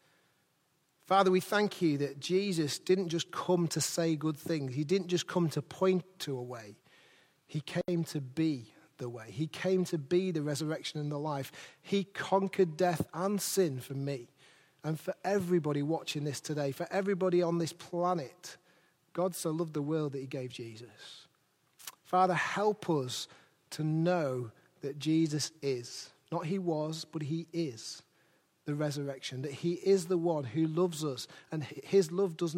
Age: 40-59